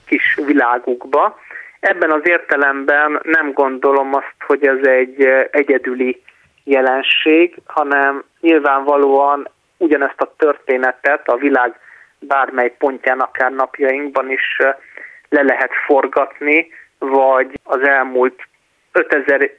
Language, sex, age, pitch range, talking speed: Hungarian, male, 30-49, 130-145 Hz, 100 wpm